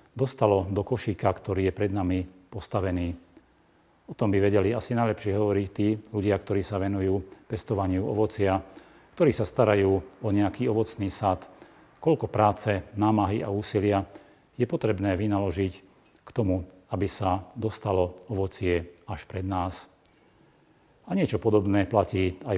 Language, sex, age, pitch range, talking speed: Slovak, male, 40-59, 95-105 Hz, 135 wpm